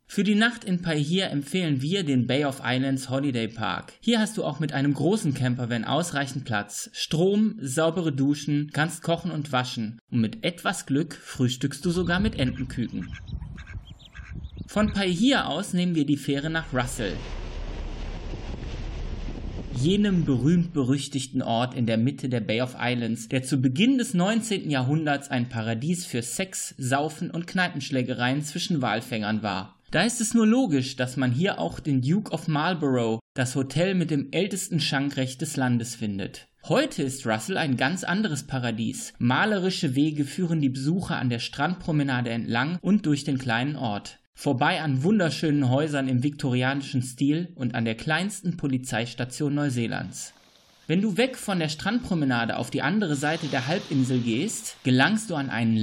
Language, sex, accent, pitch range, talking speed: German, male, German, 125-175 Hz, 160 wpm